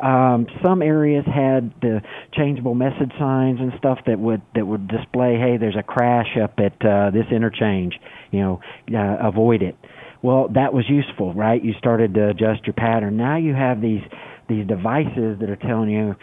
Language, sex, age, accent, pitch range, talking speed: English, male, 50-69, American, 110-130 Hz, 185 wpm